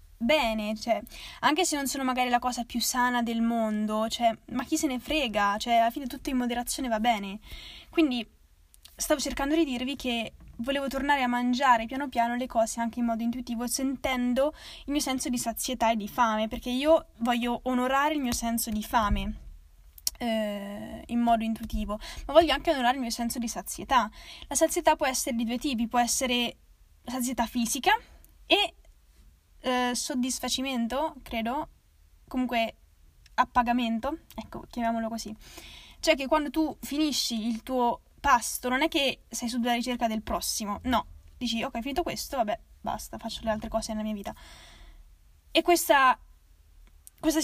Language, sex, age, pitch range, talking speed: Italian, female, 10-29, 220-270 Hz, 165 wpm